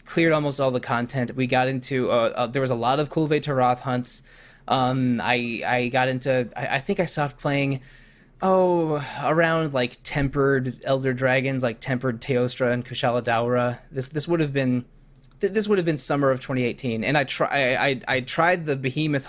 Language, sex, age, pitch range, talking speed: English, male, 20-39, 120-140 Hz, 195 wpm